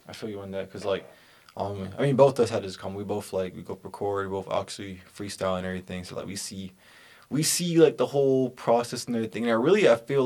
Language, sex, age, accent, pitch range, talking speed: English, male, 20-39, American, 100-115 Hz, 255 wpm